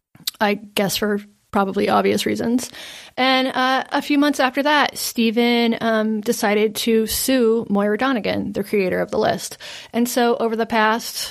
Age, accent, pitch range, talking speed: 30-49, American, 195-230 Hz, 160 wpm